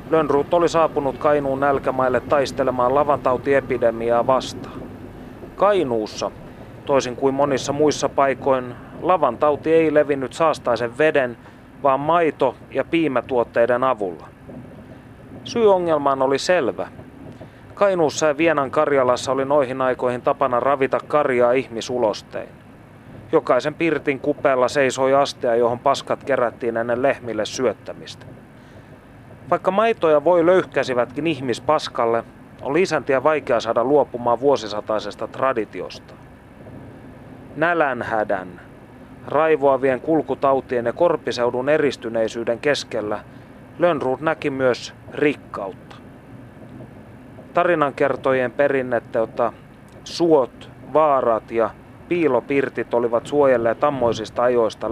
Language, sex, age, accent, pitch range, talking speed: Finnish, male, 30-49, native, 120-145 Hz, 90 wpm